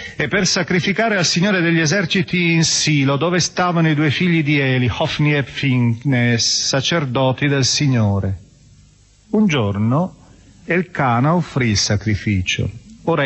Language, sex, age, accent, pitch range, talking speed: Italian, male, 40-59, native, 110-160 Hz, 130 wpm